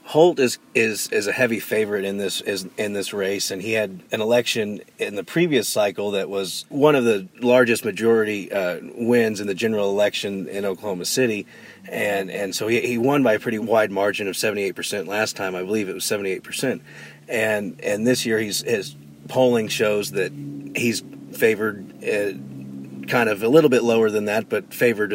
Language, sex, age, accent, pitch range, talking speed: English, male, 40-59, American, 100-125 Hz, 200 wpm